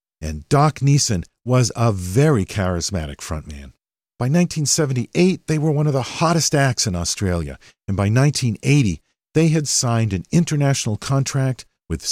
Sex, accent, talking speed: male, American, 145 wpm